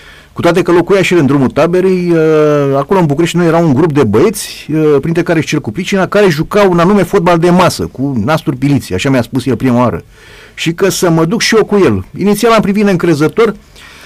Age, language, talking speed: 30-49, Romanian, 220 wpm